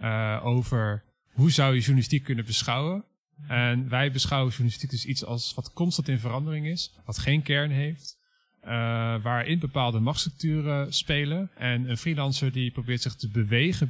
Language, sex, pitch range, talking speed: Dutch, male, 115-145 Hz, 160 wpm